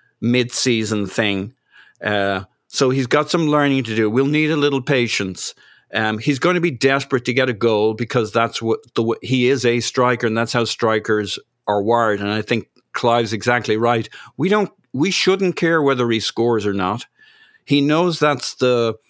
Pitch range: 110-135 Hz